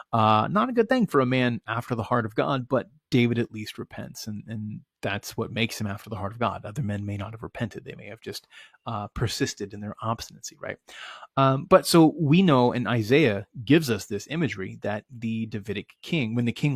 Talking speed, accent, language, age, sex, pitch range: 225 wpm, American, English, 30-49, male, 105-135 Hz